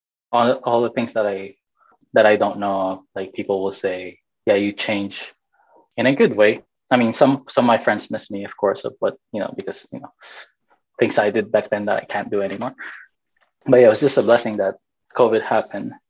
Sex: male